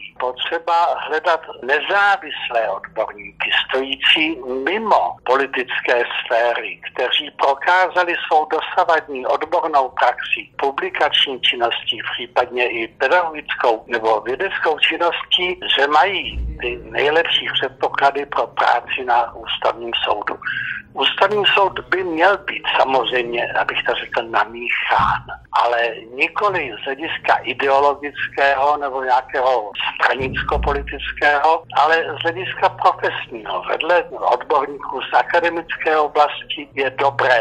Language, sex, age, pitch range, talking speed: Slovak, male, 60-79, 125-165 Hz, 100 wpm